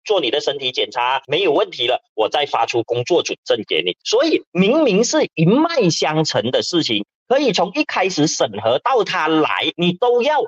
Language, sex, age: Chinese, male, 30-49